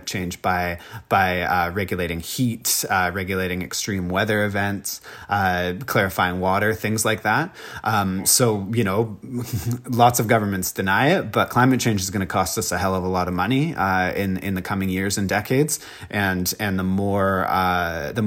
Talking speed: 180 wpm